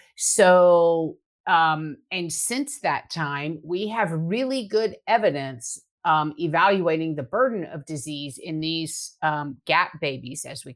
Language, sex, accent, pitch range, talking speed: English, female, American, 155-190 Hz, 135 wpm